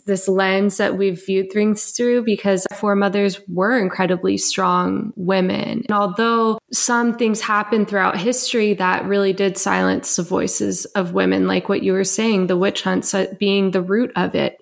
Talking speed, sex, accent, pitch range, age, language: 170 wpm, female, American, 180-205 Hz, 20-39, English